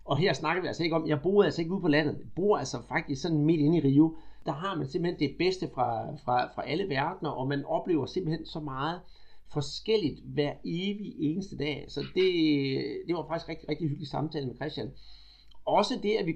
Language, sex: Danish, male